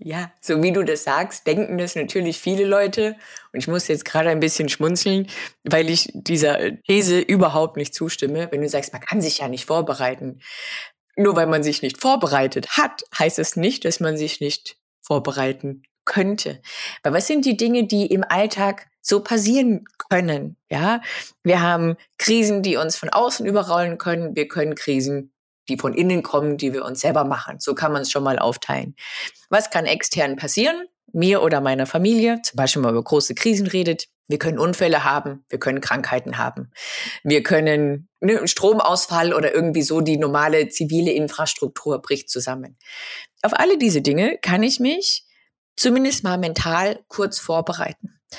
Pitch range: 150-205 Hz